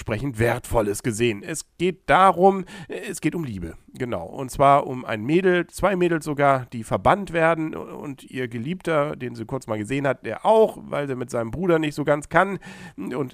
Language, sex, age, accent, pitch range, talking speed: German, male, 50-69, German, 110-160 Hz, 190 wpm